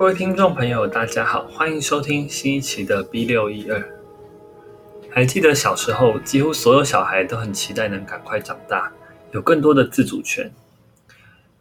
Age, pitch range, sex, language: 20-39, 105-165 Hz, male, Chinese